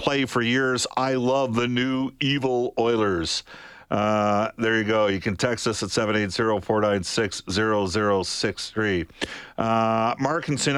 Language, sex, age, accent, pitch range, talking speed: English, male, 50-69, American, 100-125 Hz, 120 wpm